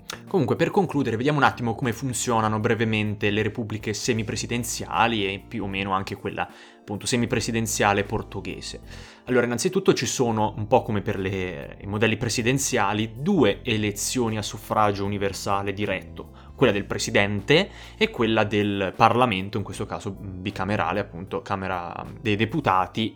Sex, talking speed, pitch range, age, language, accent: male, 140 wpm, 105-130 Hz, 20-39, Italian, native